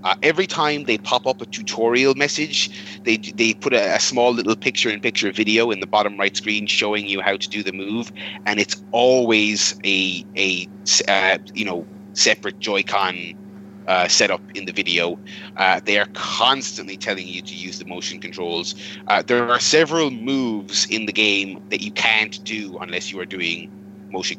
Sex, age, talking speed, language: male, 30-49, 180 wpm, English